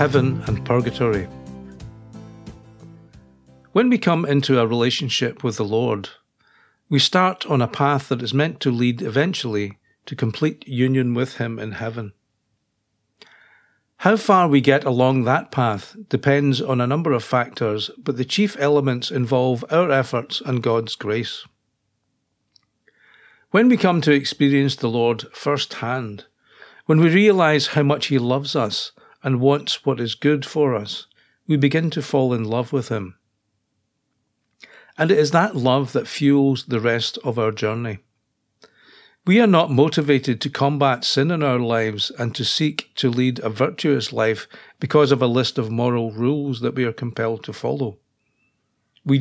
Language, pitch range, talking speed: English, 115-145 Hz, 155 wpm